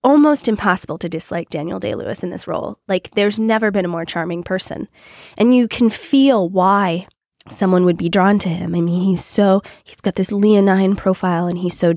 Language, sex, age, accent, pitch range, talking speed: English, female, 20-39, American, 170-200 Hz, 205 wpm